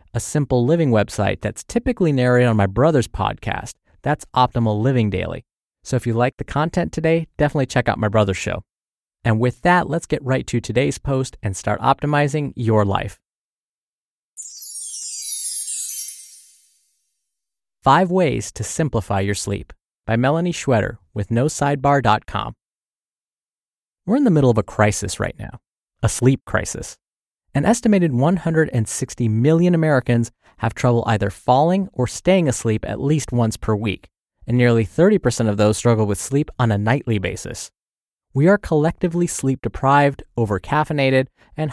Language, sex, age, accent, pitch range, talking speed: English, male, 30-49, American, 105-150 Hz, 145 wpm